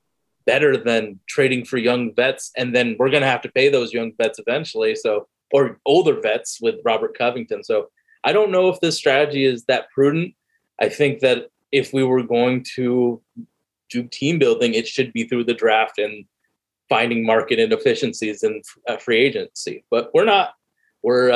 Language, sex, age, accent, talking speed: English, male, 20-39, American, 180 wpm